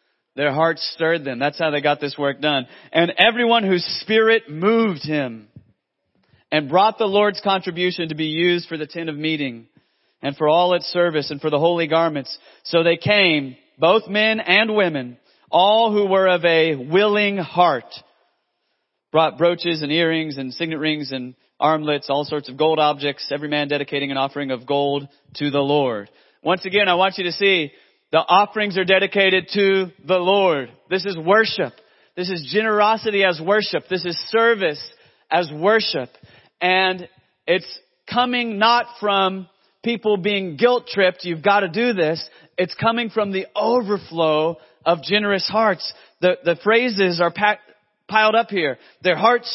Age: 30-49